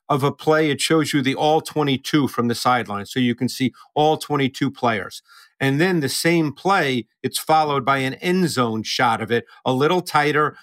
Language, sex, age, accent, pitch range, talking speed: English, male, 50-69, American, 130-170 Hz, 205 wpm